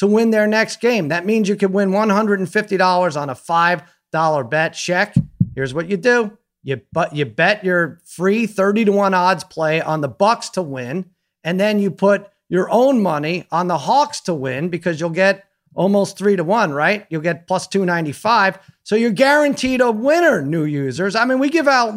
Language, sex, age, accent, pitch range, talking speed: English, male, 40-59, American, 140-205 Hz, 195 wpm